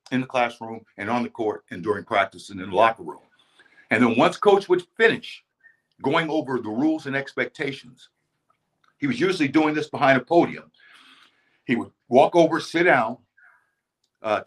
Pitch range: 115-150 Hz